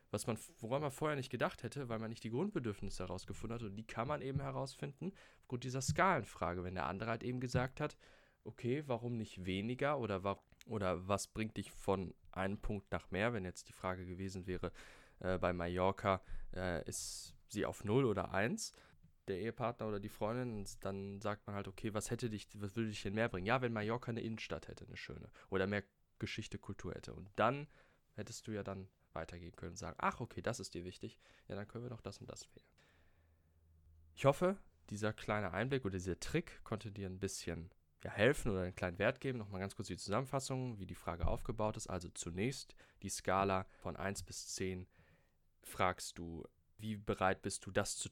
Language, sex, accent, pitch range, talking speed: German, male, German, 90-120 Hz, 205 wpm